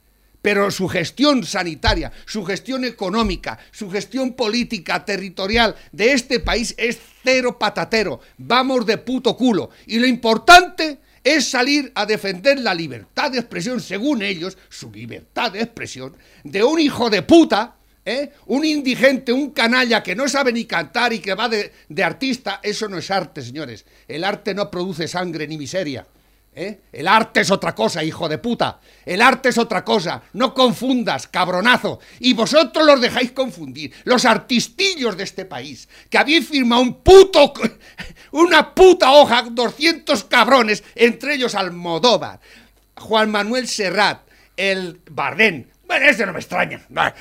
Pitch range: 195-260 Hz